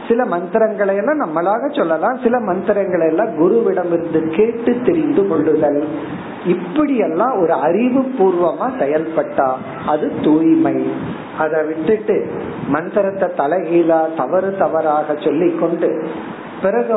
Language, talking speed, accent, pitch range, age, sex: Tamil, 40 wpm, native, 160-245 Hz, 50-69, male